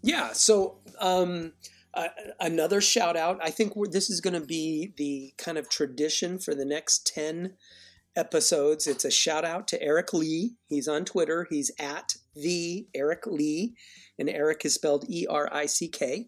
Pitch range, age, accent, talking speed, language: 150-200 Hz, 40-59, American, 150 wpm, English